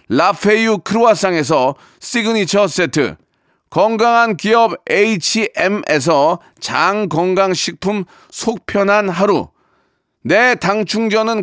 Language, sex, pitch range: Korean, male, 180-235 Hz